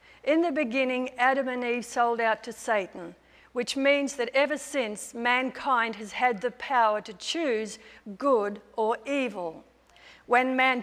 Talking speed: 150 wpm